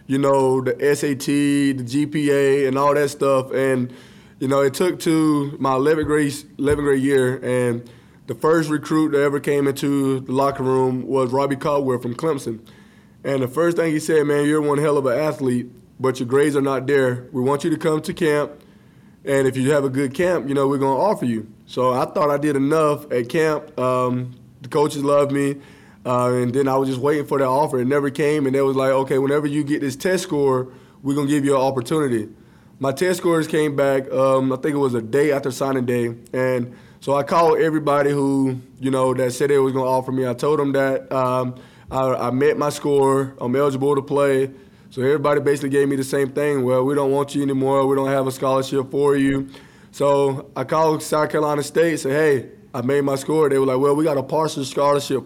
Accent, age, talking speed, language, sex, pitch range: American, 20-39, 225 wpm, English, male, 130-145 Hz